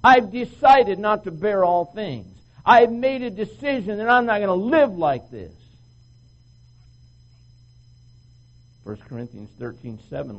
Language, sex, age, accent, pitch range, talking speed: English, male, 60-79, American, 120-190 Hz, 135 wpm